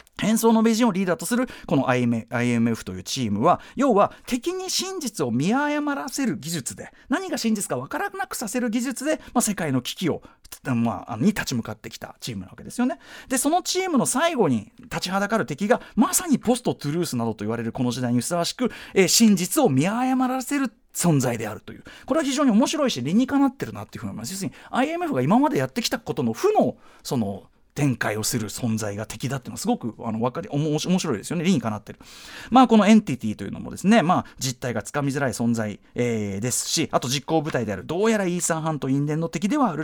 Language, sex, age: Japanese, male, 40-59